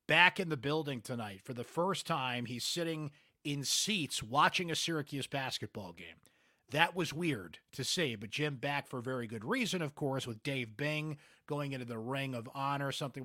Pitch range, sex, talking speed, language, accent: 120-160 Hz, male, 190 wpm, English, American